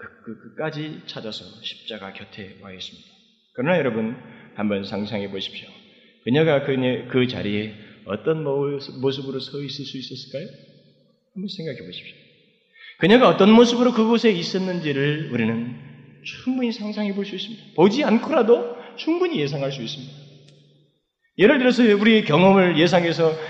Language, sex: Korean, male